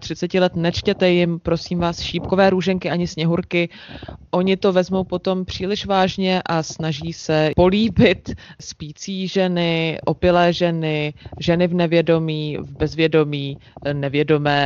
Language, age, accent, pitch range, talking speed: Czech, 20-39, native, 150-175 Hz, 125 wpm